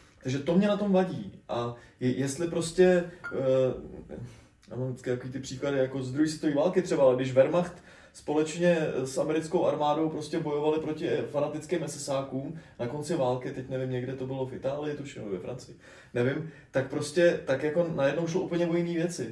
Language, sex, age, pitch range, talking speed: Czech, male, 20-39, 135-165 Hz, 175 wpm